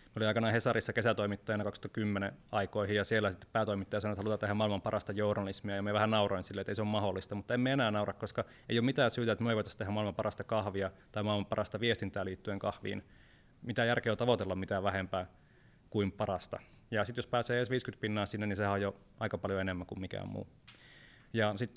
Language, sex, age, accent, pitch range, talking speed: Finnish, male, 20-39, native, 100-115 Hz, 215 wpm